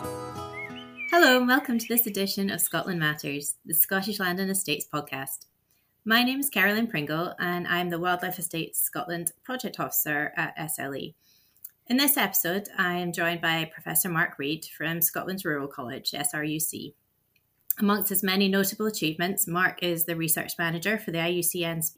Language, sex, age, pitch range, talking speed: English, female, 30-49, 155-195 Hz, 160 wpm